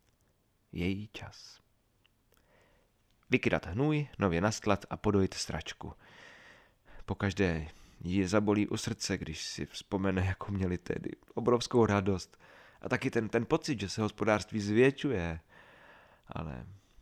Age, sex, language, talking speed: 30-49, male, Czech, 115 wpm